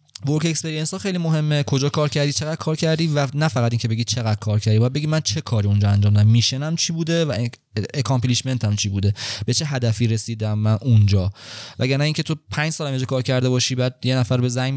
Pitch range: 115-150 Hz